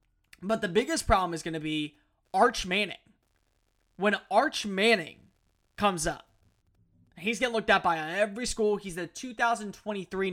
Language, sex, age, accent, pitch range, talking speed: English, male, 20-39, American, 150-205 Hz, 145 wpm